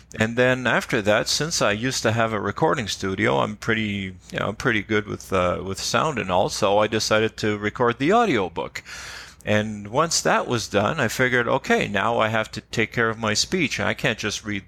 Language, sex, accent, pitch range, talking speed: English, male, American, 100-120 Hz, 220 wpm